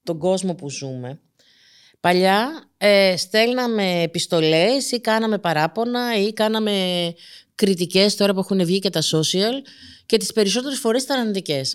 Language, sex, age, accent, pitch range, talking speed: Greek, female, 30-49, native, 195-275 Hz, 140 wpm